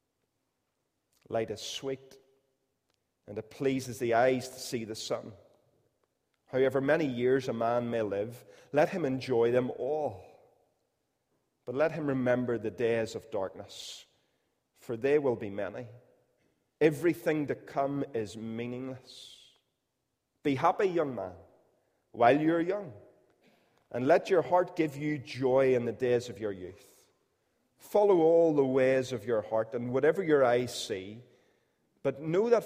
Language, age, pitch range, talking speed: English, 30-49, 115-140 Hz, 145 wpm